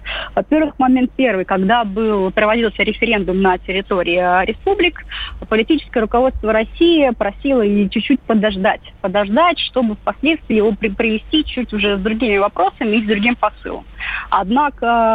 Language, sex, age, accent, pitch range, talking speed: Russian, female, 30-49, native, 205-255 Hz, 125 wpm